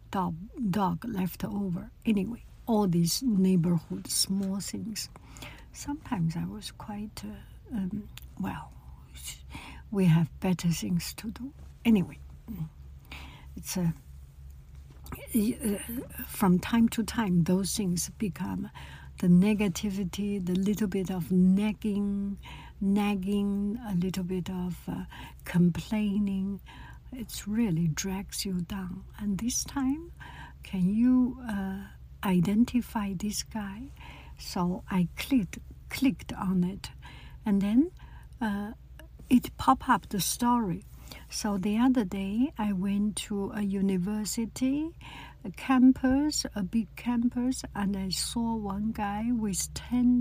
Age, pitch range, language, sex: 60-79, 175-225 Hz, English, female